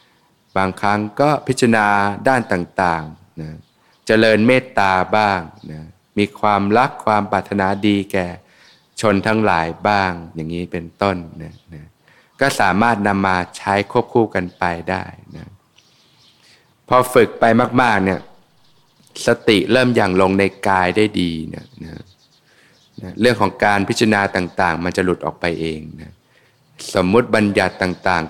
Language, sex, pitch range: Thai, male, 90-105 Hz